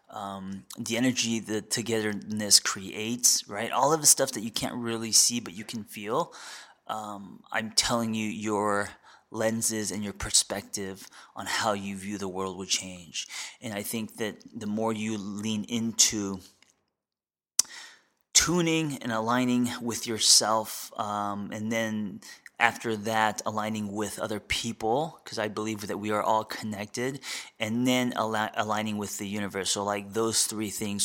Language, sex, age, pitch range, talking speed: English, male, 20-39, 105-115 Hz, 155 wpm